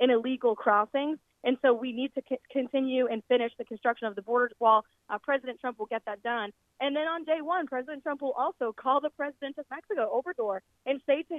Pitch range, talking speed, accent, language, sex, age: 230-295 Hz, 230 wpm, American, English, female, 30-49